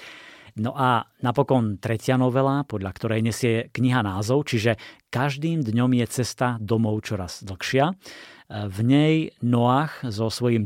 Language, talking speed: Slovak, 130 wpm